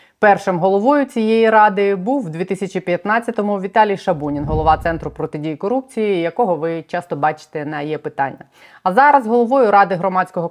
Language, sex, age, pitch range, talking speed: Ukrainian, female, 20-39, 160-200 Hz, 145 wpm